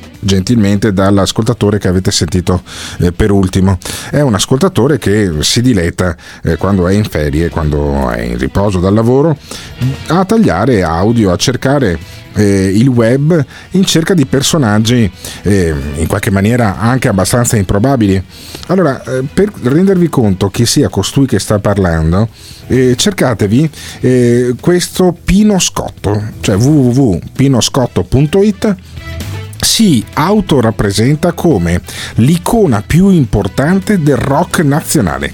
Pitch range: 95-140 Hz